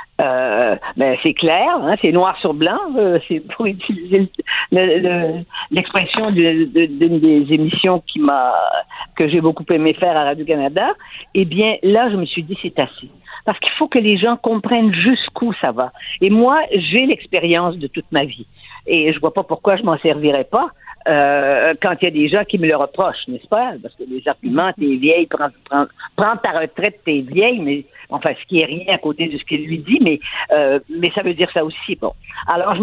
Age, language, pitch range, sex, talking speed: 50-69, French, 155-205 Hz, female, 215 wpm